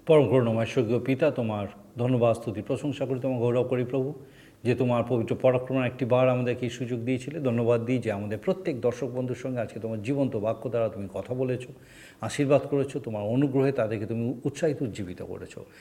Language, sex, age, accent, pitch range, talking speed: Bengali, male, 50-69, native, 120-165 Hz, 175 wpm